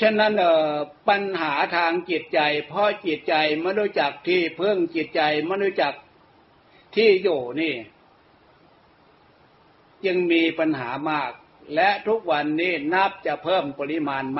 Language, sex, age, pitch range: Thai, male, 60-79, 150-195 Hz